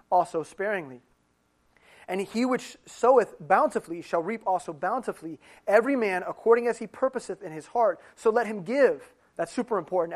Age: 30-49